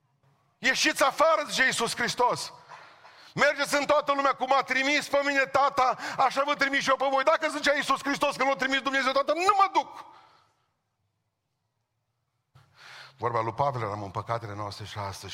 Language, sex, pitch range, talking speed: Romanian, male, 125-190 Hz, 170 wpm